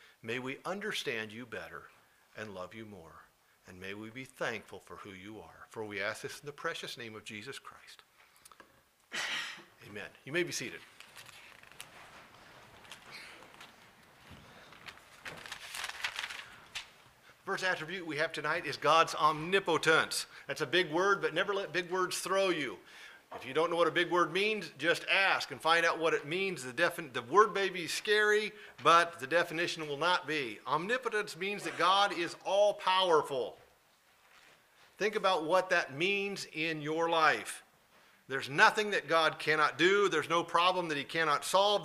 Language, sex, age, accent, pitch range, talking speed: English, male, 50-69, American, 150-195 Hz, 160 wpm